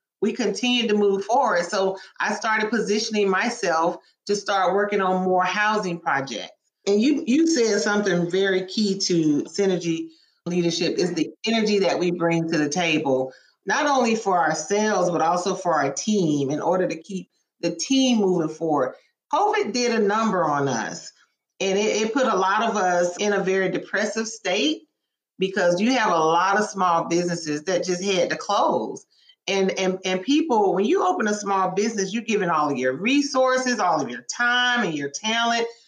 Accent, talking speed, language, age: American, 180 wpm, English, 40-59